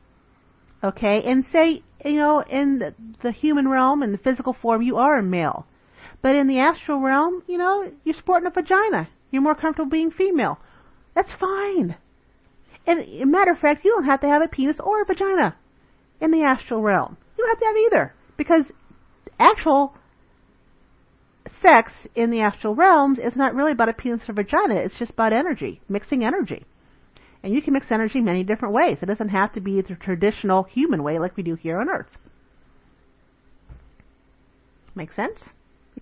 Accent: American